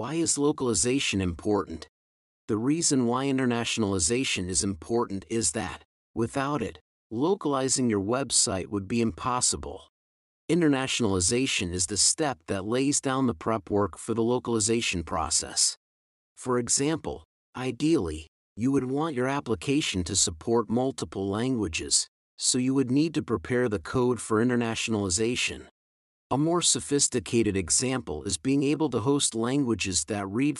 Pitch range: 95-130 Hz